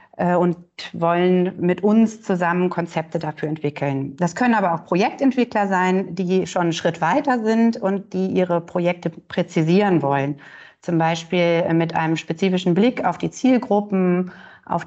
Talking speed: 145 wpm